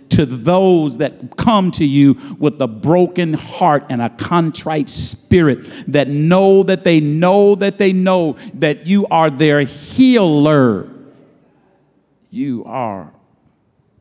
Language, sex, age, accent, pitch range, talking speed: English, male, 50-69, American, 105-155 Hz, 125 wpm